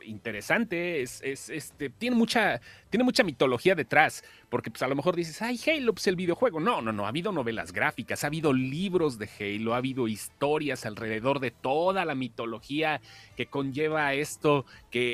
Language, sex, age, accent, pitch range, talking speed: Spanish, male, 30-49, Mexican, 120-160 Hz, 180 wpm